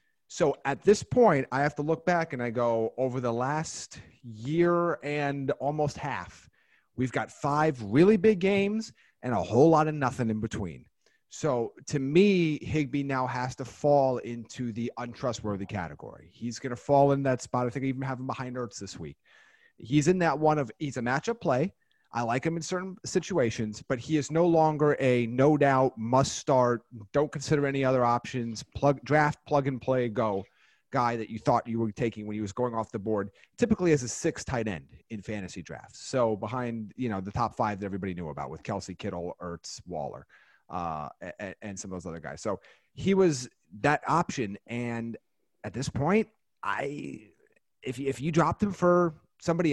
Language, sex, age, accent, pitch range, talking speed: English, male, 30-49, American, 115-155 Hz, 180 wpm